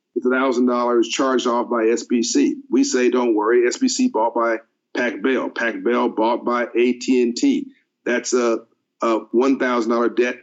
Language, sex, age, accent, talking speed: English, male, 50-69, American, 150 wpm